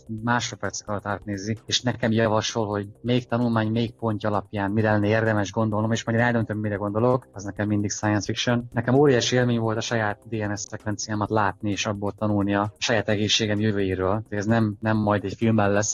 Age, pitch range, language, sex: 20-39, 105-120 Hz, Hungarian, male